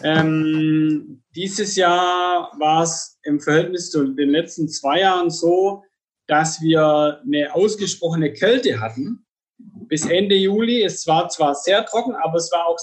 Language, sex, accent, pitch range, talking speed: German, male, German, 160-205 Hz, 145 wpm